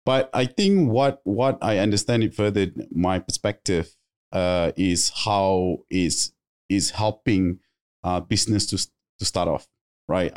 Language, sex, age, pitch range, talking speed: English, male, 20-39, 90-110 Hz, 140 wpm